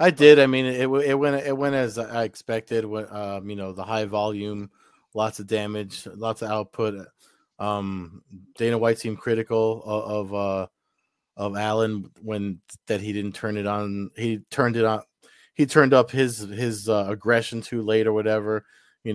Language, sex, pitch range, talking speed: English, male, 100-115 Hz, 180 wpm